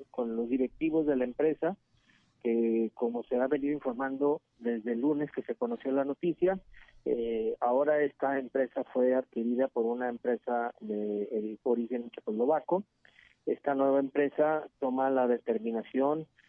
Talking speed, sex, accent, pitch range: 140 wpm, male, Mexican, 115-145 Hz